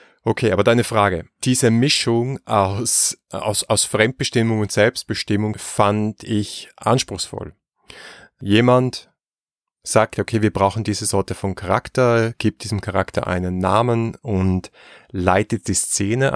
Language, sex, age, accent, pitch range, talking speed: German, male, 30-49, German, 95-110 Hz, 120 wpm